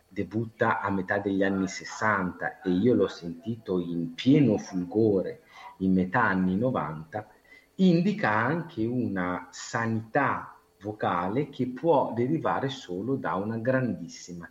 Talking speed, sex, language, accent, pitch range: 120 wpm, male, Italian, native, 90-130 Hz